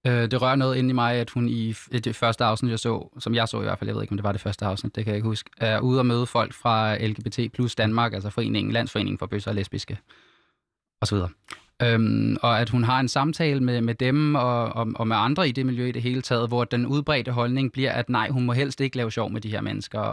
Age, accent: 20-39, native